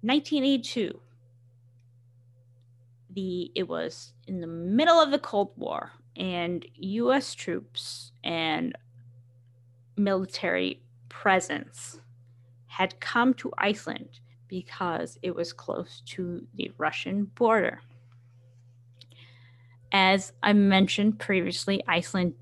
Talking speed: 90 wpm